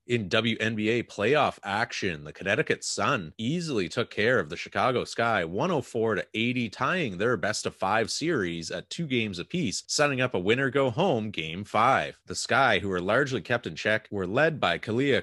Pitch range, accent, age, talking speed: 100-130 Hz, American, 30-49, 185 wpm